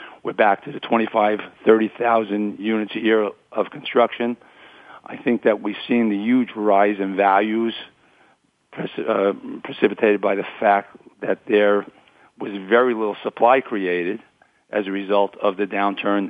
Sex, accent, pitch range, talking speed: male, American, 100-110 Hz, 150 wpm